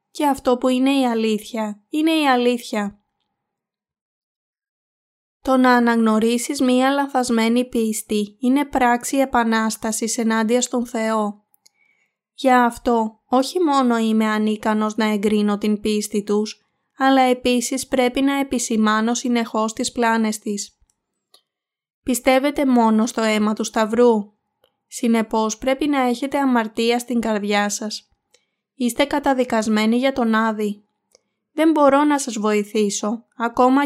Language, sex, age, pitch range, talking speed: Greek, female, 20-39, 215-260 Hz, 115 wpm